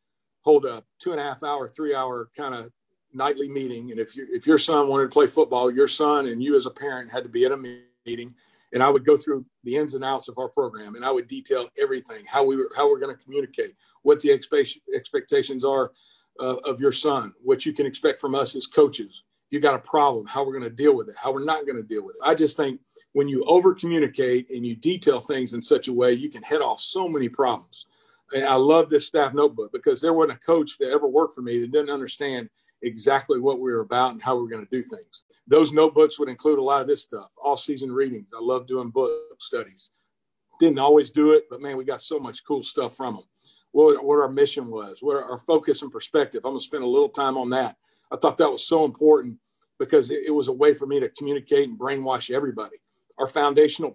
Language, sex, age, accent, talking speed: English, male, 50-69, American, 240 wpm